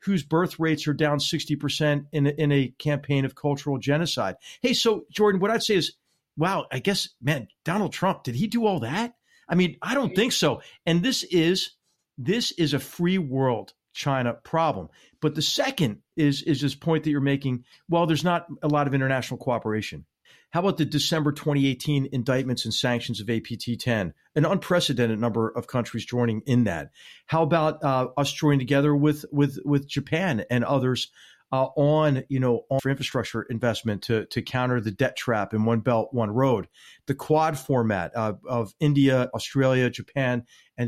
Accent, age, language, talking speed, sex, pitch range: American, 50-69, English, 185 wpm, male, 125-155 Hz